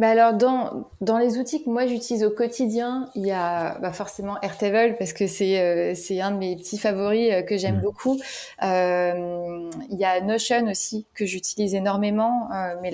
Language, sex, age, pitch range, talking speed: French, female, 20-39, 185-225 Hz, 195 wpm